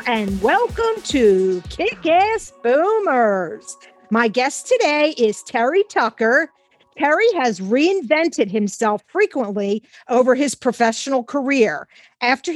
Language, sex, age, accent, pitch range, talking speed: English, female, 50-69, American, 220-300 Hz, 100 wpm